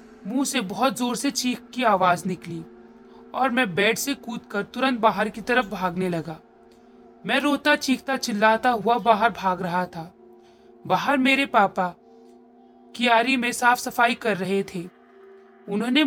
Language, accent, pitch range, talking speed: Hindi, native, 185-265 Hz, 65 wpm